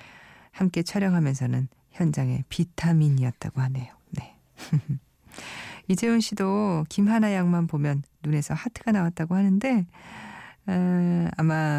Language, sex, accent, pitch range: Korean, female, native, 135-185 Hz